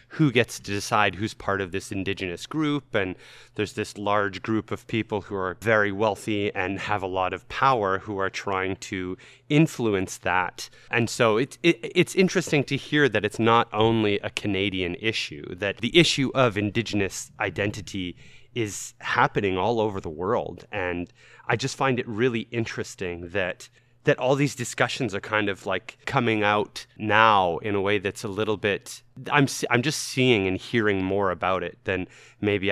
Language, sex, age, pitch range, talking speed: English, male, 30-49, 100-125 Hz, 175 wpm